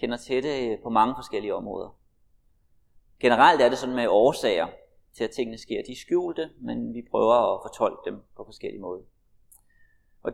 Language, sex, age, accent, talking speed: Danish, male, 30-49, native, 175 wpm